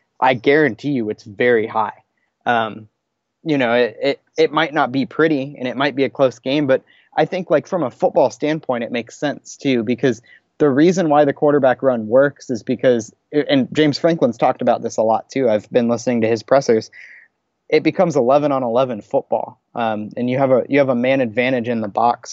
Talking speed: 210 wpm